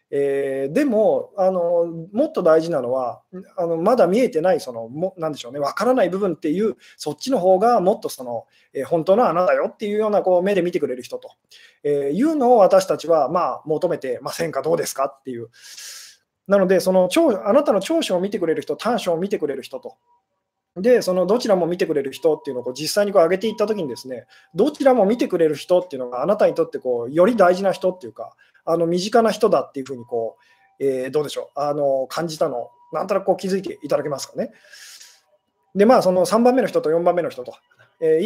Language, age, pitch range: Japanese, 20-39, 160-255 Hz